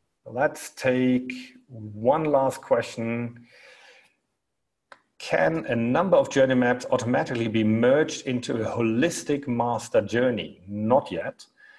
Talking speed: 105 wpm